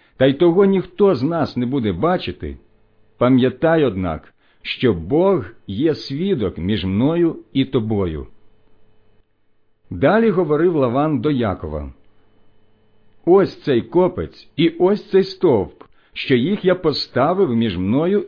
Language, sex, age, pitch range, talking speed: Ukrainian, male, 50-69, 110-155 Hz, 120 wpm